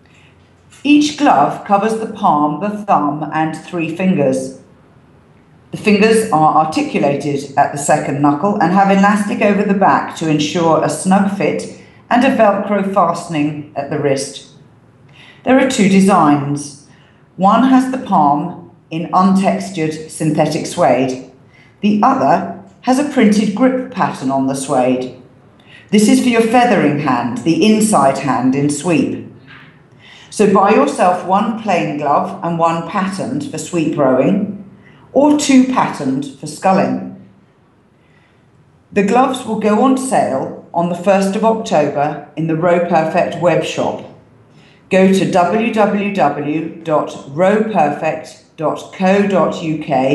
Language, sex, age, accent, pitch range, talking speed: English, female, 40-59, British, 145-205 Hz, 125 wpm